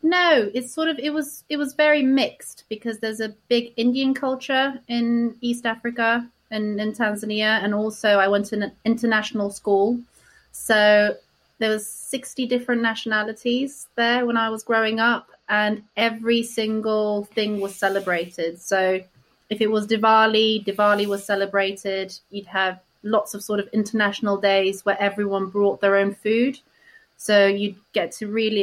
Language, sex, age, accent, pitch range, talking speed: English, female, 30-49, British, 195-235 Hz, 155 wpm